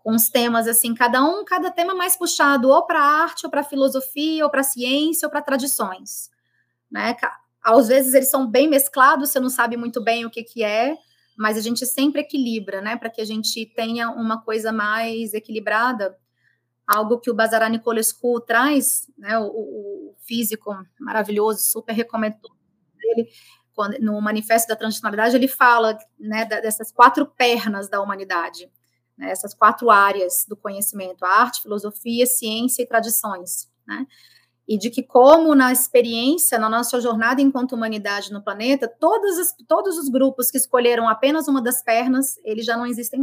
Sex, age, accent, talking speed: female, 20-39, Brazilian, 165 wpm